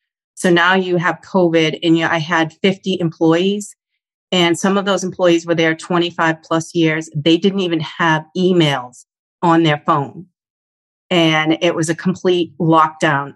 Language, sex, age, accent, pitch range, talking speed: English, female, 40-59, American, 165-190 Hz, 155 wpm